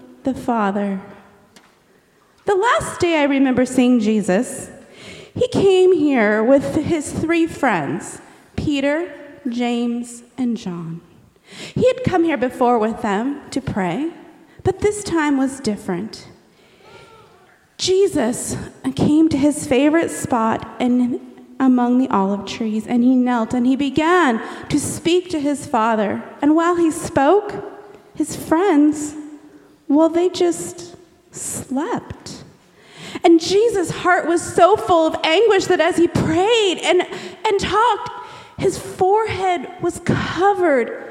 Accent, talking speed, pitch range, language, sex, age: American, 125 wpm, 250-345 Hz, English, female, 30-49